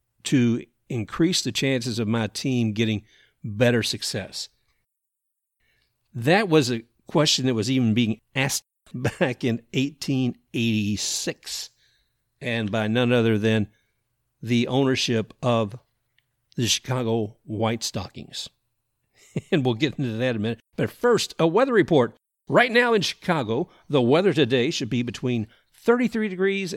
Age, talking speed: 50-69, 130 wpm